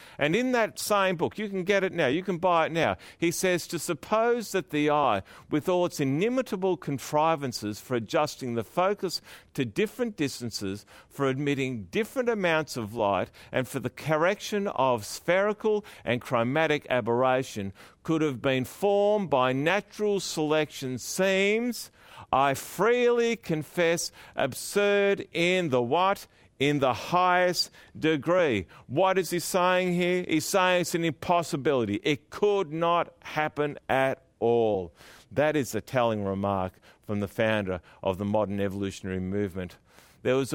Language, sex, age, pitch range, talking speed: English, male, 50-69, 115-180 Hz, 145 wpm